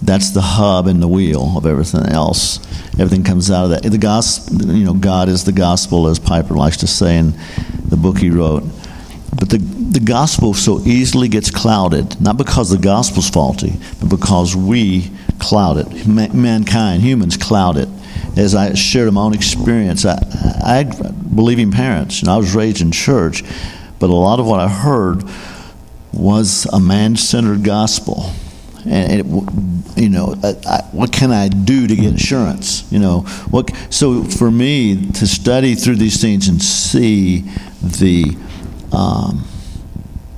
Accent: American